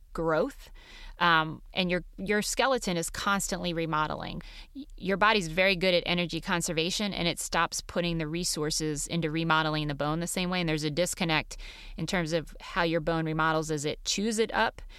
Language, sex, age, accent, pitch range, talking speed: English, female, 30-49, American, 160-180 Hz, 180 wpm